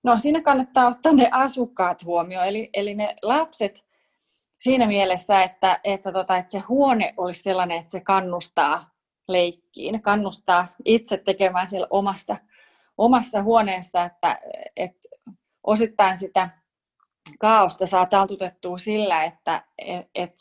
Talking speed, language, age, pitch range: 125 wpm, Finnish, 30-49, 185-225 Hz